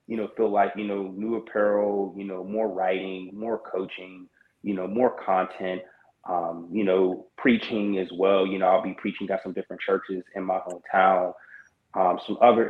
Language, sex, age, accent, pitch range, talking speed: English, male, 30-49, American, 95-105 Hz, 185 wpm